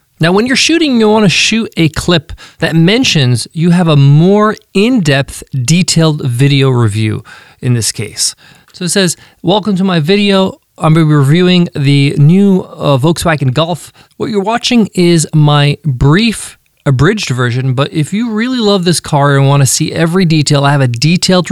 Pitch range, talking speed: 135-175 Hz, 185 wpm